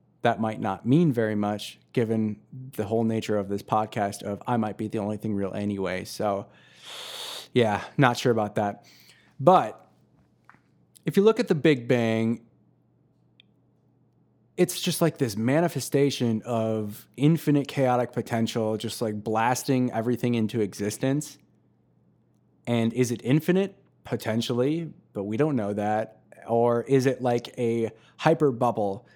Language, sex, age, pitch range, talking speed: English, male, 20-39, 110-135 Hz, 140 wpm